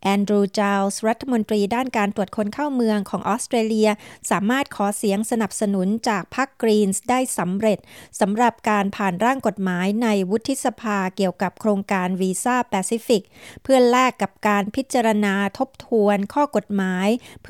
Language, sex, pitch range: Thai, female, 195-240 Hz